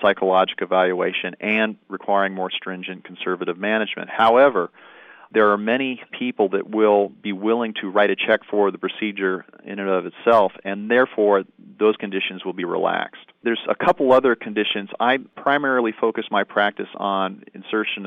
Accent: American